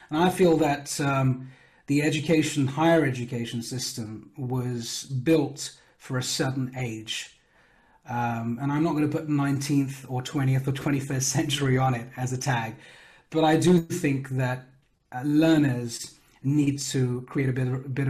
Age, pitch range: 30-49, 125-145 Hz